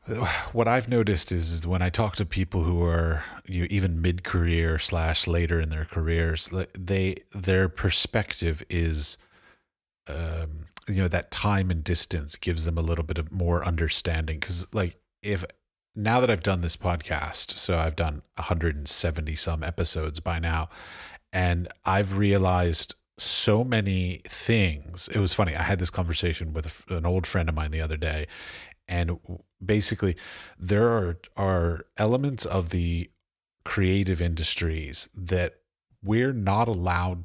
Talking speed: 150 wpm